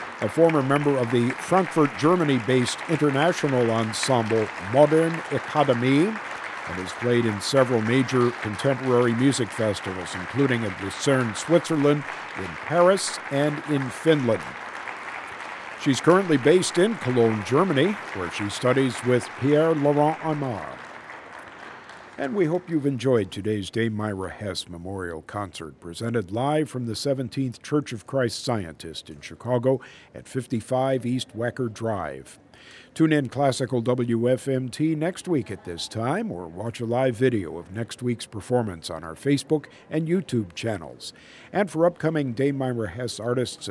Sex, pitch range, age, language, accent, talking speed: male, 110-145 Hz, 50-69, English, American, 135 wpm